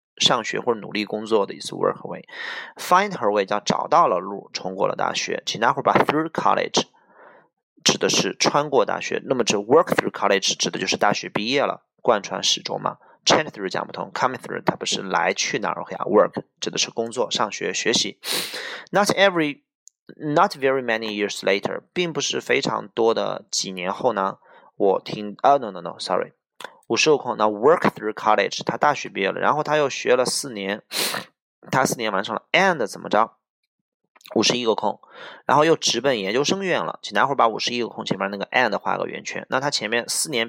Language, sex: Chinese, male